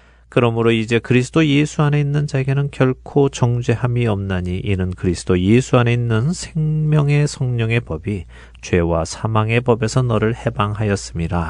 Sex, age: male, 40-59